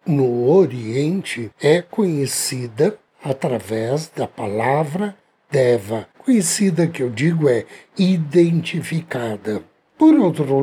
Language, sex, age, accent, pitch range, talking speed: Portuguese, male, 60-79, Brazilian, 130-190 Hz, 90 wpm